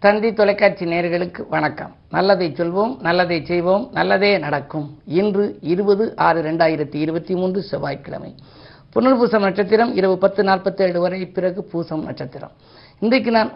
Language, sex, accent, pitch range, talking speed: Tamil, female, native, 160-195 Hz, 125 wpm